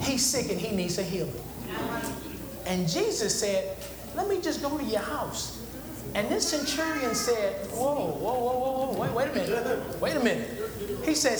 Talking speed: 185 wpm